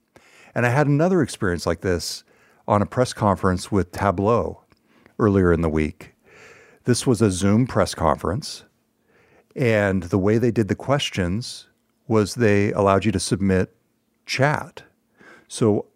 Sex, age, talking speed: male, 60-79, 145 wpm